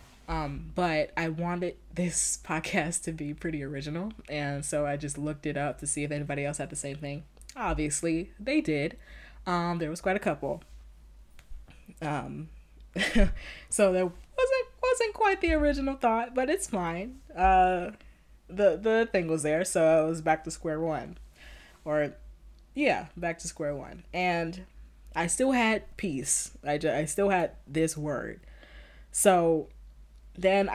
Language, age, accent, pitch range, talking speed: English, 20-39, American, 135-170 Hz, 155 wpm